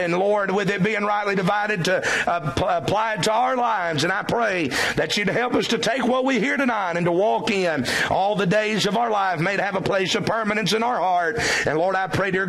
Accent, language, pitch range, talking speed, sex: American, English, 180-225 Hz, 245 wpm, male